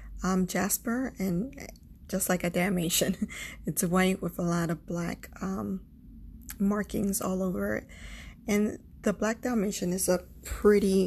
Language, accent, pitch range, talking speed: English, American, 185-205 Hz, 140 wpm